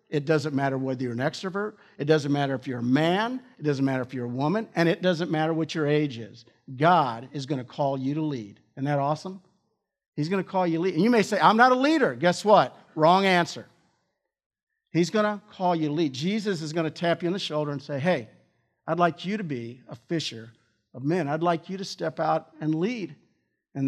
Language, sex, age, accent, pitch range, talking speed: English, male, 50-69, American, 130-165 Hz, 240 wpm